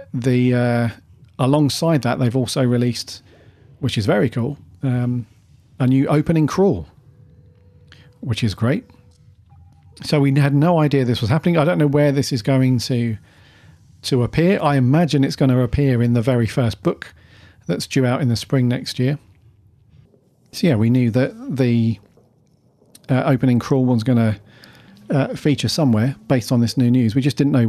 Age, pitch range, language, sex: 40-59, 115-140 Hz, English, male